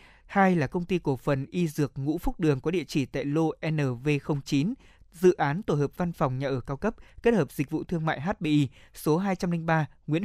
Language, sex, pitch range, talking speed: Vietnamese, male, 145-180 Hz, 215 wpm